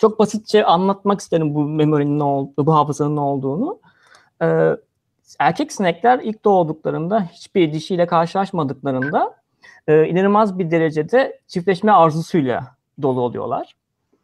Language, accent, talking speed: Turkish, native, 115 wpm